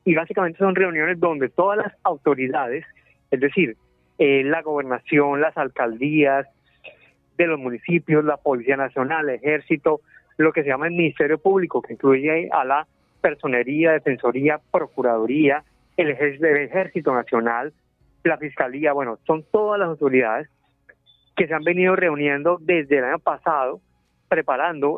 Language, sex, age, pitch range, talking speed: Spanish, male, 30-49, 135-170 Hz, 140 wpm